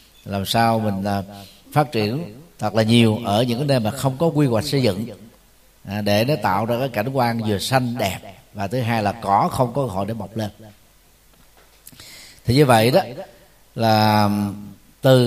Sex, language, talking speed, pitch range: male, Vietnamese, 195 wpm, 105-140 Hz